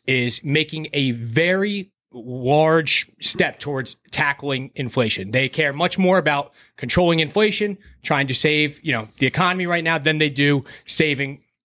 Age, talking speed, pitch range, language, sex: 30-49, 150 wpm, 125-160 Hz, English, male